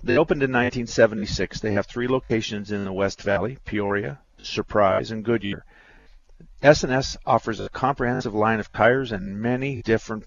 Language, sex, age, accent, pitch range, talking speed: English, male, 50-69, American, 105-135 Hz, 150 wpm